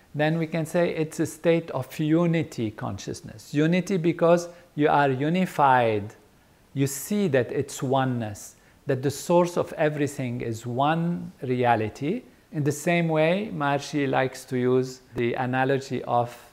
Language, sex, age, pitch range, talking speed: English, male, 50-69, 120-160 Hz, 140 wpm